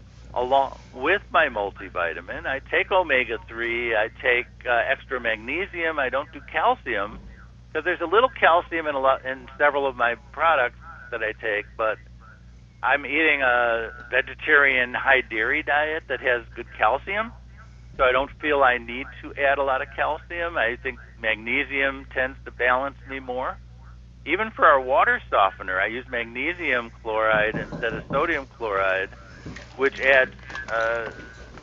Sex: male